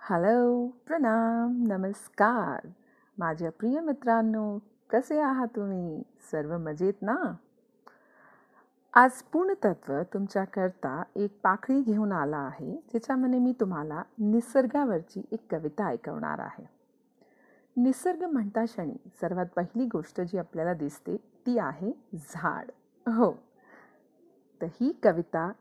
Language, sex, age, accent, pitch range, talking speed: Hindi, female, 40-59, native, 180-250 Hz, 100 wpm